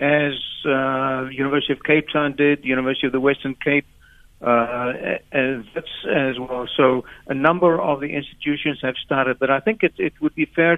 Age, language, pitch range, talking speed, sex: 60-79, English, 125-150 Hz, 180 wpm, male